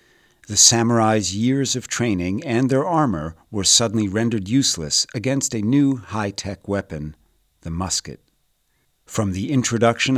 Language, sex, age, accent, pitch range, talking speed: English, male, 50-69, American, 90-120 Hz, 130 wpm